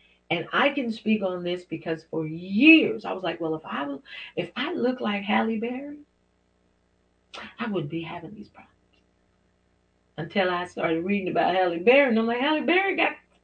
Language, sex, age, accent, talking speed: English, female, 40-59, American, 180 wpm